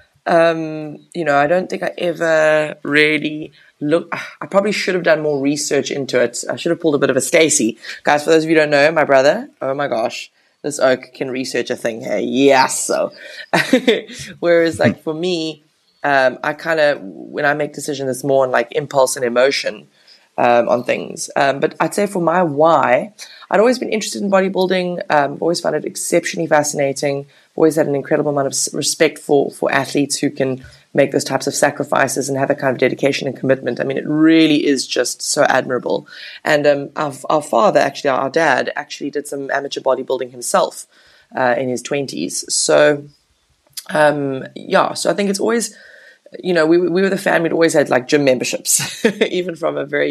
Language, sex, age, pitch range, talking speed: English, female, 20-39, 140-170 Hz, 200 wpm